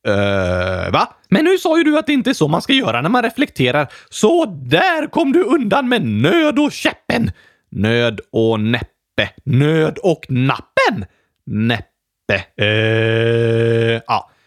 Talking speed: 155 wpm